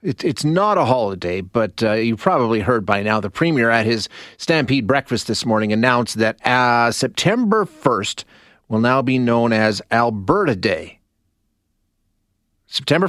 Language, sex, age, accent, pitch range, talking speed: English, male, 30-49, American, 110-155 Hz, 145 wpm